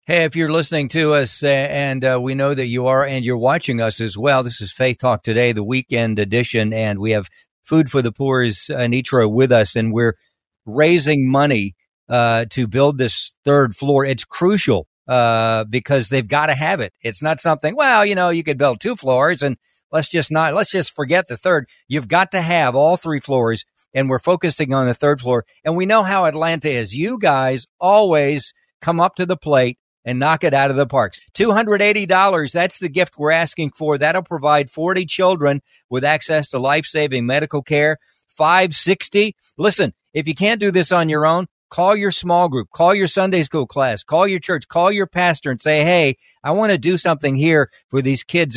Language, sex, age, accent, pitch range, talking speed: English, male, 50-69, American, 130-170 Hz, 205 wpm